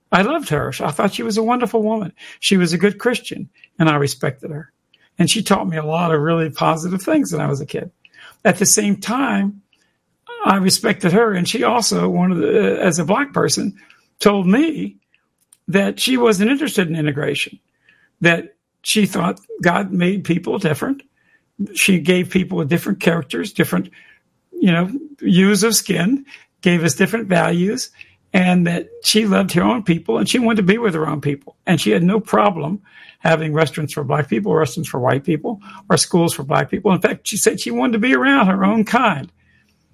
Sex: male